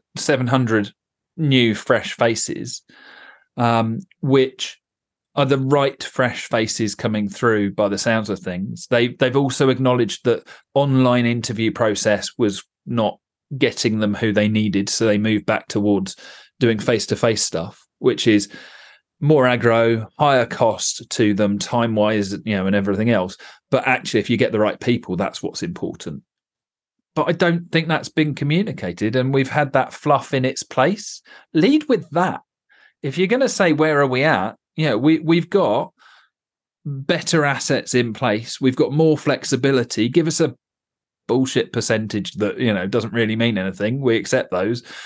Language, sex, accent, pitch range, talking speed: English, male, British, 110-155 Hz, 165 wpm